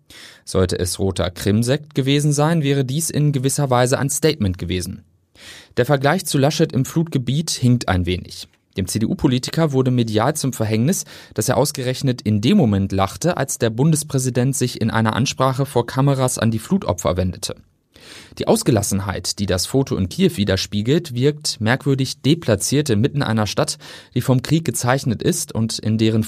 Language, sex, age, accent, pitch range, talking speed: German, male, 30-49, German, 110-140 Hz, 160 wpm